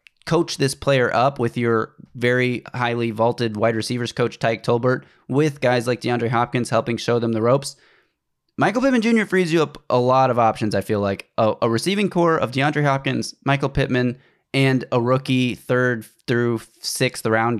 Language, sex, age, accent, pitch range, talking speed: English, male, 20-39, American, 105-130 Hz, 175 wpm